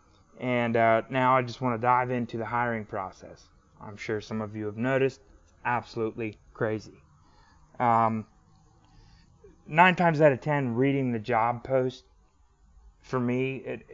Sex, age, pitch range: male, 30-49, 100-120 Hz